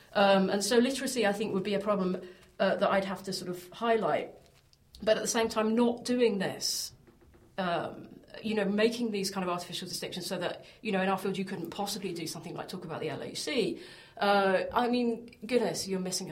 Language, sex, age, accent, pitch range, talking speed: English, female, 30-49, British, 180-215 Hz, 215 wpm